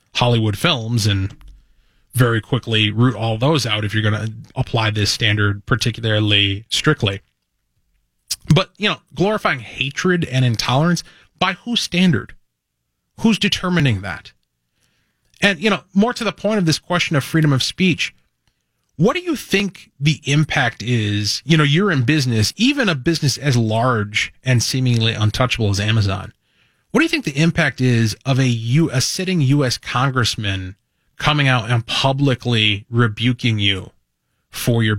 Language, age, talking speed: English, 30-49, 155 wpm